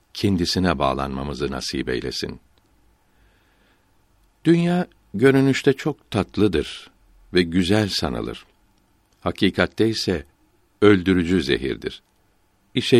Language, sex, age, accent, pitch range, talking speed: Turkish, male, 60-79, native, 90-110 Hz, 75 wpm